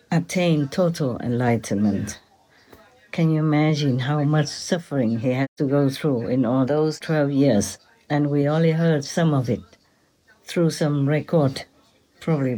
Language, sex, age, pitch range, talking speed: English, female, 60-79, 130-155 Hz, 145 wpm